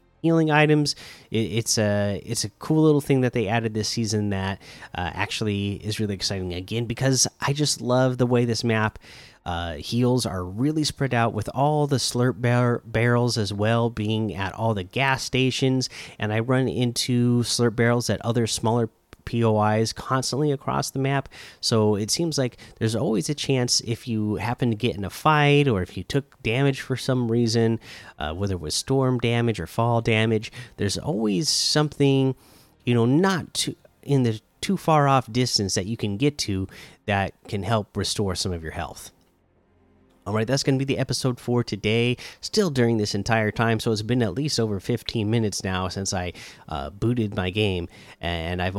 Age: 30-49